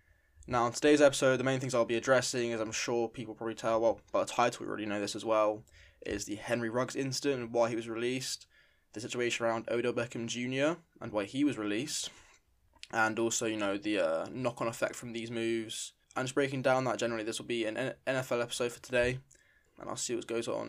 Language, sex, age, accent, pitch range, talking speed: English, male, 10-29, British, 115-130 Hz, 230 wpm